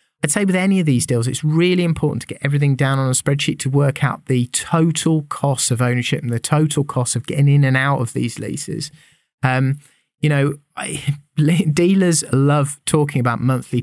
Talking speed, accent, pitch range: 195 wpm, British, 115-145 Hz